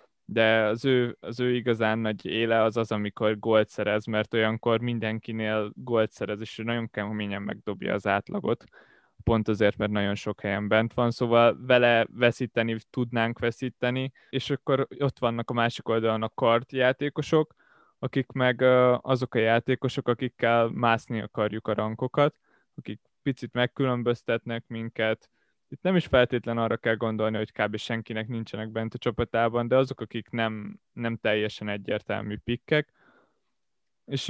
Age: 20-39